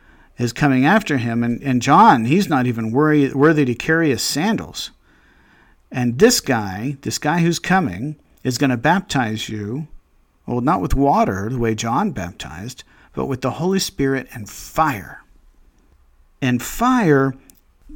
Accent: American